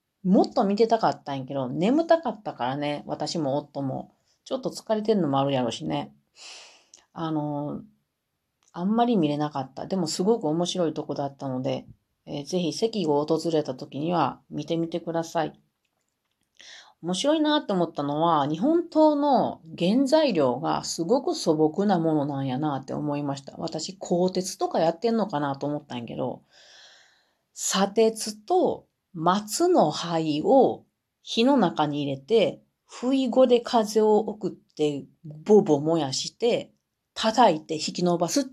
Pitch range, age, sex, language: 150-215 Hz, 40-59, female, Japanese